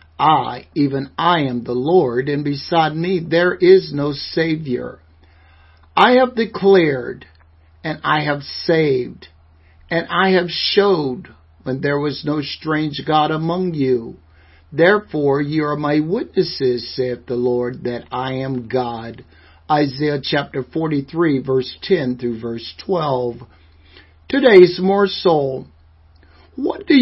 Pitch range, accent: 120-160 Hz, American